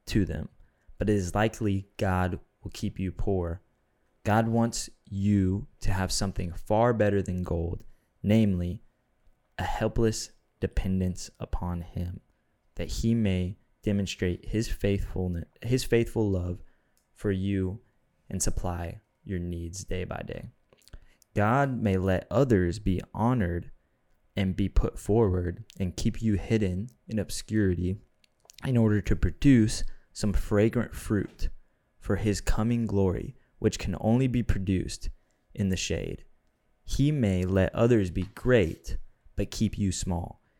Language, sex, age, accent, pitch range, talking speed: English, male, 20-39, American, 90-110 Hz, 135 wpm